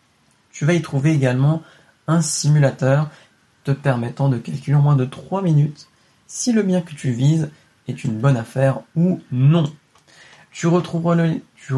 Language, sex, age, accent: French, male, 20-39, French